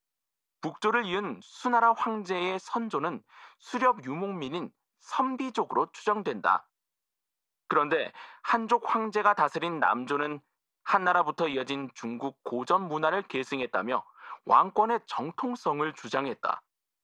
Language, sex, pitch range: Korean, male, 150-215 Hz